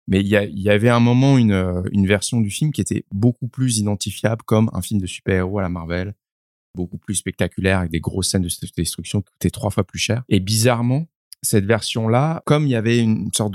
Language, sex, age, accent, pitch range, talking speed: French, male, 20-39, French, 95-115 Hz, 225 wpm